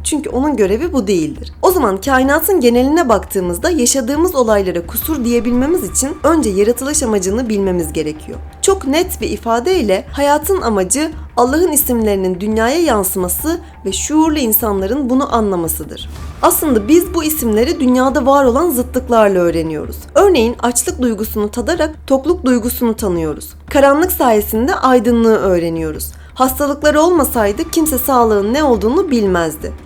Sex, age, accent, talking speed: female, 30-49, native, 125 wpm